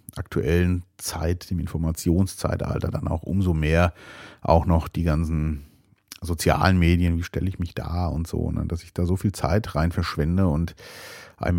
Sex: male